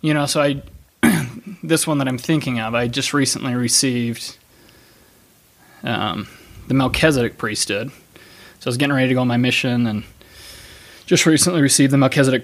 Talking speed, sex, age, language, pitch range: 165 wpm, male, 20-39, English, 115-135 Hz